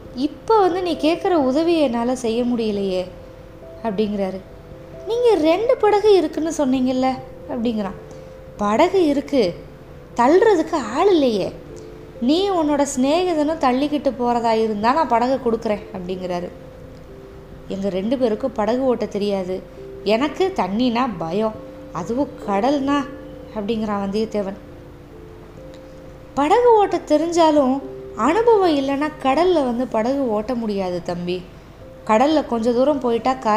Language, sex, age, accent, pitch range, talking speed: Tamil, female, 20-39, native, 210-300 Hz, 105 wpm